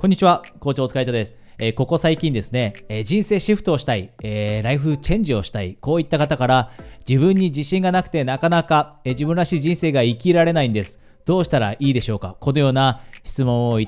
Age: 40-59